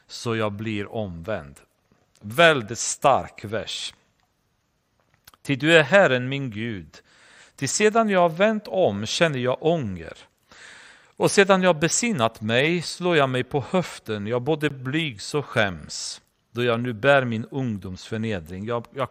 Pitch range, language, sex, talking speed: 110-150 Hz, Swedish, male, 150 wpm